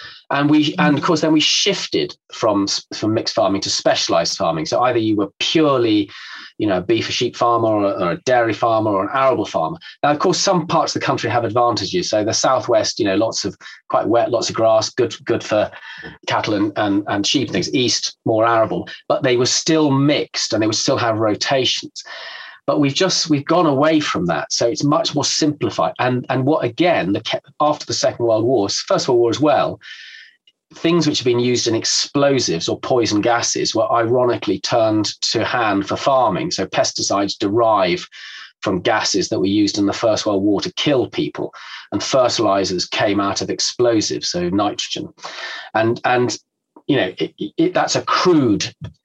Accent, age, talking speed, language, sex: British, 30-49, 195 wpm, English, male